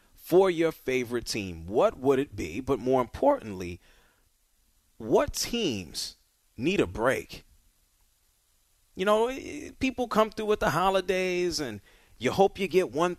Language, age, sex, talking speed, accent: English, 40-59, male, 135 wpm, American